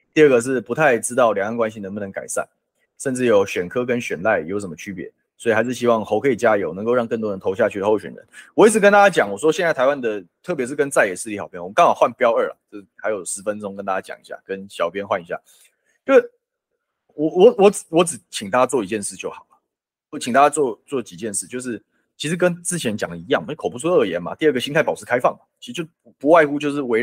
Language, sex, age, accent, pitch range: Chinese, male, 20-39, native, 115-180 Hz